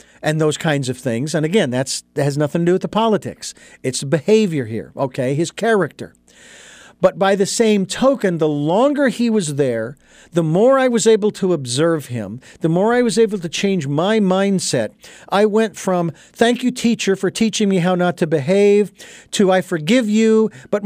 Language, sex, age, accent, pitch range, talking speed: English, male, 50-69, American, 145-215 Hz, 190 wpm